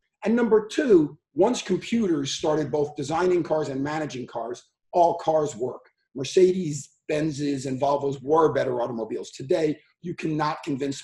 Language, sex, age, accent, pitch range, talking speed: English, male, 50-69, American, 145-185 Hz, 140 wpm